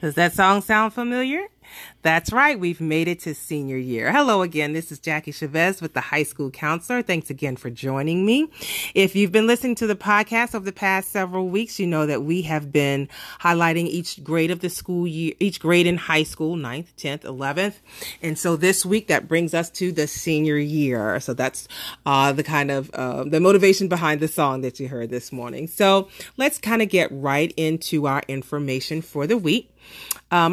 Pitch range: 140-190 Hz